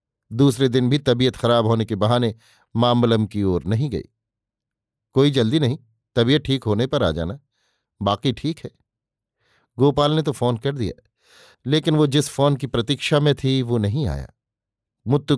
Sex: male